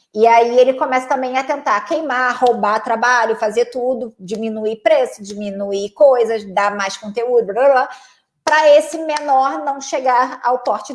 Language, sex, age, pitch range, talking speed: Portuguese, female, 20-39, 210-270 Hz, 160 wpm